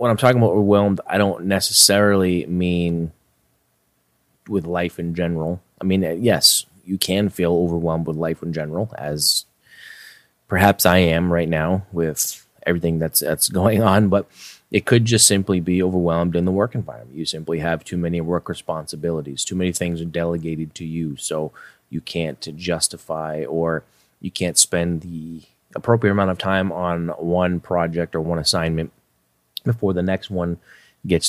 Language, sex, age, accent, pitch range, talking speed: English, male, 30-49, American, 80-95 Hz, 165 wpm